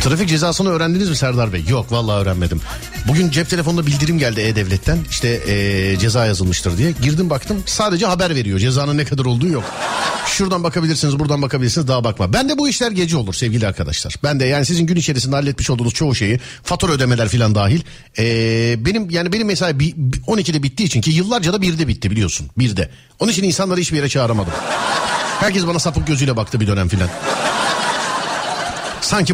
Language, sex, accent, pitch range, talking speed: Turkish, male, native, 110-170 Hz, 180 wpm